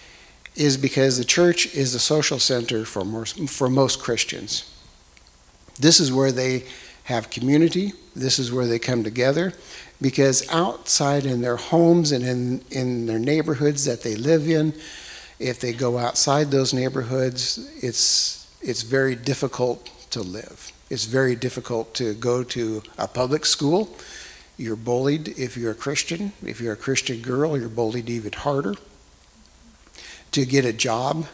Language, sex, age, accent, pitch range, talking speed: English, male, 60-79, American, 115-140 Hz, 150 wpm